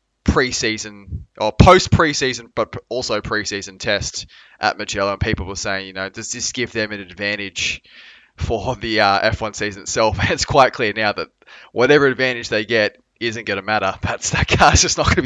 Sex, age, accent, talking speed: male, 20-39, Australian, 190 wpm